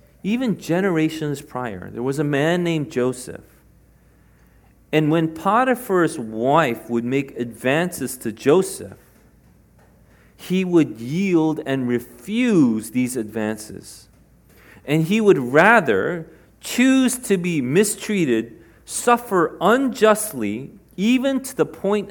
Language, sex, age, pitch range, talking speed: English, male, 40-59, 130-190 Hz, 105 wpm